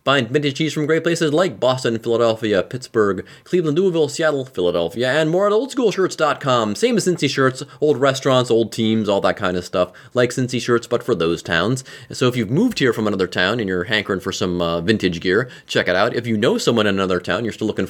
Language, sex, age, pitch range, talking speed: English, male, 30-49, 105-160 Hz, 230 wpm